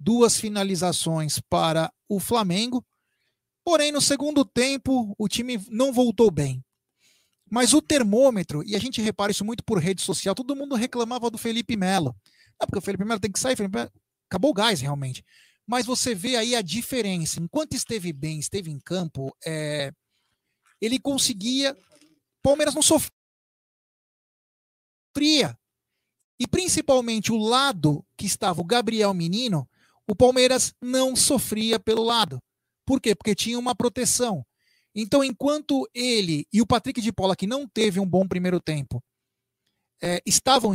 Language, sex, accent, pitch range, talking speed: Portuguese, male, Brazilian, 180-245 Hz, 150 wpm